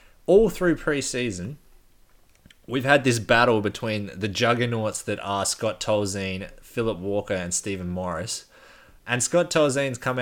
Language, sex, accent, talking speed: English, male, Australian, 135 wpm